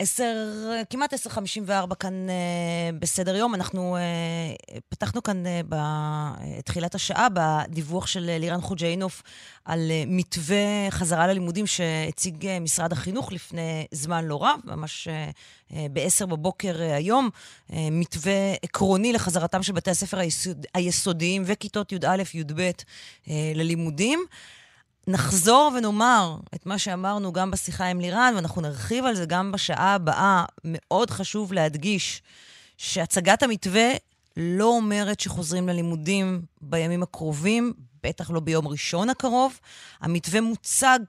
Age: 30-49